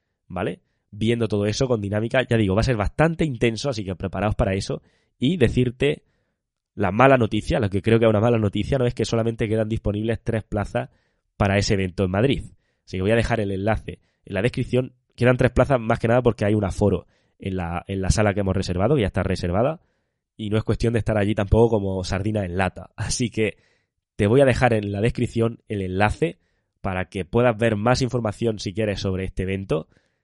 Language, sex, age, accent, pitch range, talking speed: Spanish, male, 20-39, Spanish, 100-120 Hz, 215 wpm